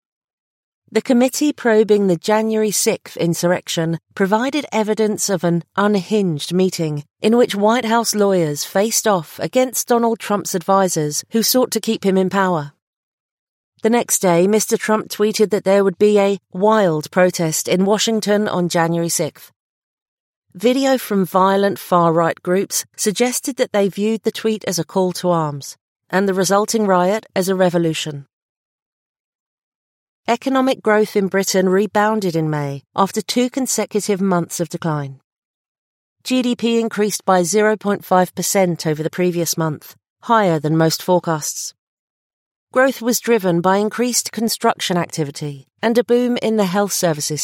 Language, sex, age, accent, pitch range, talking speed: English, female, 40-59, British, 175-220 Hz, 140 wpm